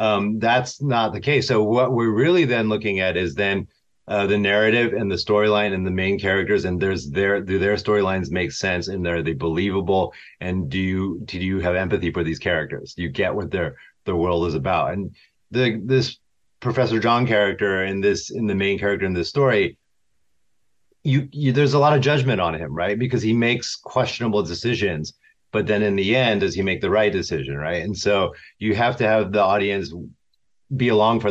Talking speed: 205 wpm